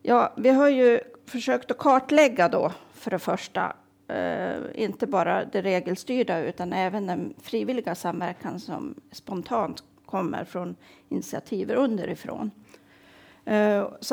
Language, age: Swedish, 40-59